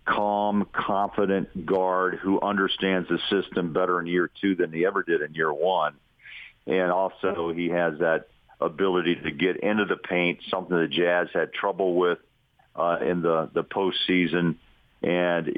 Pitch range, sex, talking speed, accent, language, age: 90-100 Hz, male, 160 wpm, American, English, 50-69